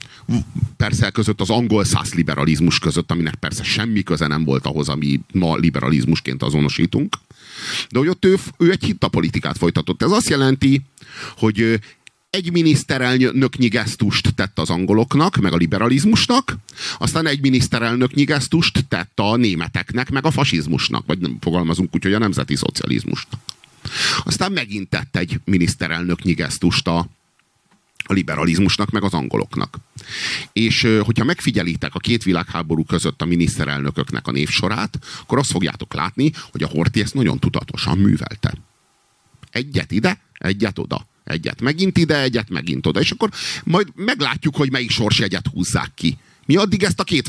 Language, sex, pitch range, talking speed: Hungarian, male, 90-140 Hz, 145 wpm